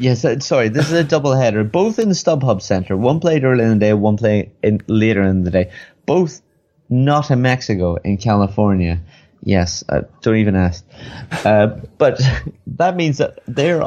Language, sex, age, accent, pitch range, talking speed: English, male, 30-49, British, 100-135 Hz, 180 wpm